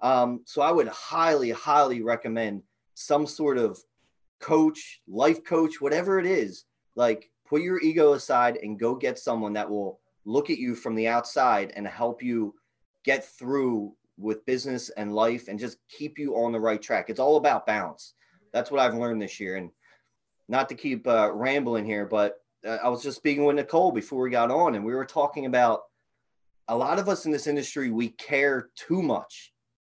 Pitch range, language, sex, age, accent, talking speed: 115-155 Hz, English, male, 30-49, American, 190 wpm